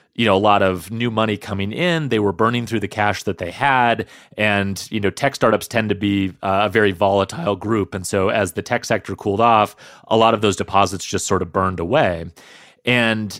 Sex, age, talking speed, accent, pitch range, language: male, 30-49, 225 wpm, American, 95-115 Hz, English